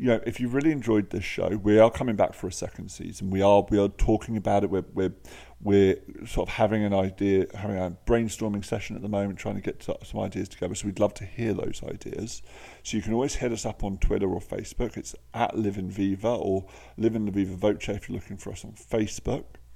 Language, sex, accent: English, male, British